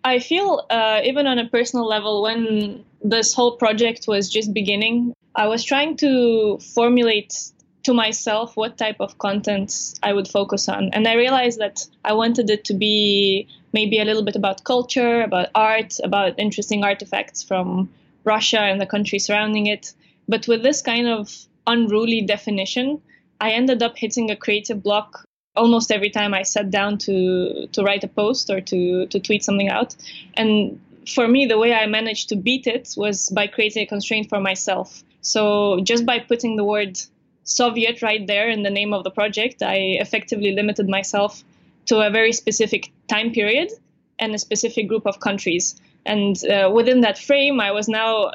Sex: female